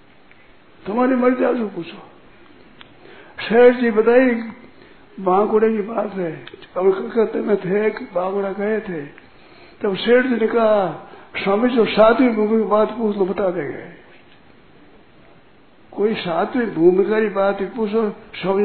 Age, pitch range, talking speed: 60-79, 195-235 Hz, 135 wpm